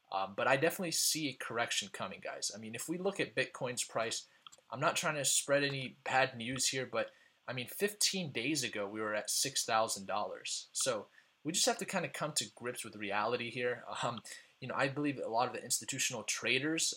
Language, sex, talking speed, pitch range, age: English, male, 220 wpm, 115-155 Hz, 20-39